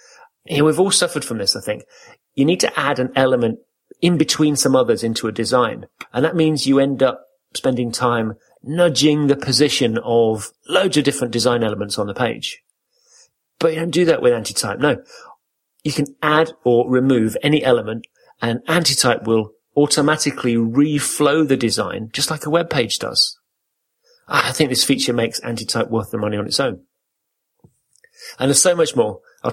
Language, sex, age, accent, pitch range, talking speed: English, male, 40-59, British, 115-155 Hz, 175 wpm